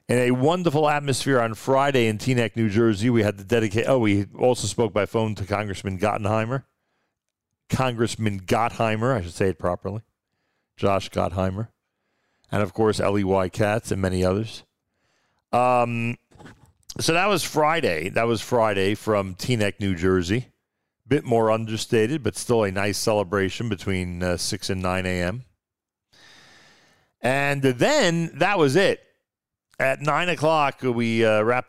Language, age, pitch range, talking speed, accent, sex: English, 50-69, 100-120 Hz, 150 wpm, American, male